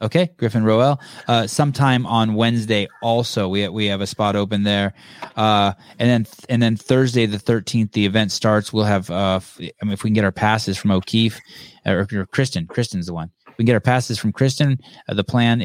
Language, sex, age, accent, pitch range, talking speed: English, male, 20-39, American, 95-115 Hz, 205 wpm